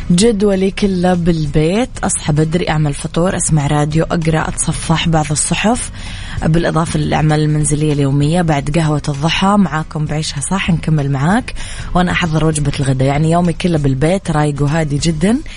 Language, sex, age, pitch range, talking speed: English, female, 20-39, 145-180 Hz, 140 wpm